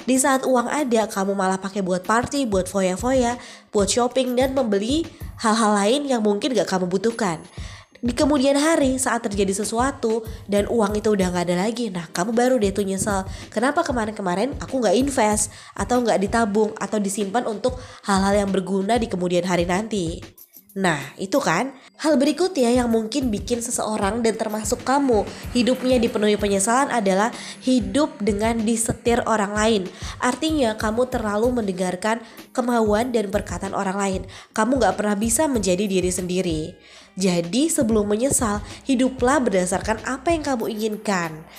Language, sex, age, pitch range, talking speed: Indonesian, female, 20-39, 195-250 Hz, 150 wpm